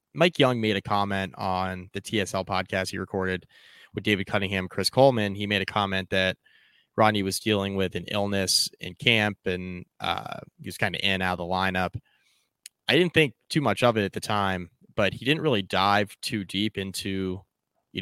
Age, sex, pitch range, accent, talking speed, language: 20-39, male, 90-105 Hz, American, 200 wpm, English